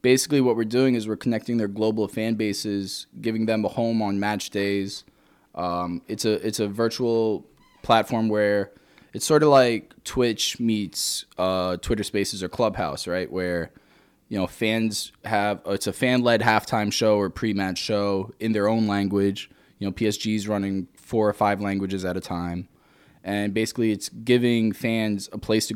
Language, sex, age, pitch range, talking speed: English, male, 10-29, 100-115 Hz, 175 wpm